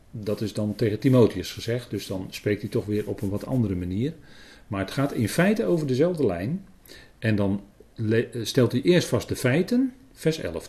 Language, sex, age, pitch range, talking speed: Dutch, male, 40-59, 105-170 Hz, 195 wpm